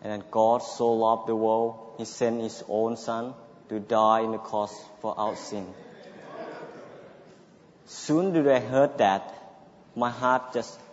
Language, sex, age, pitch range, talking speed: English, male, 20-39, 105-155 Hz, 155 wpm